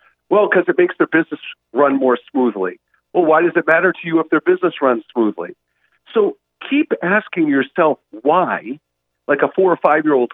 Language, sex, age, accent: English, male, 50-69, American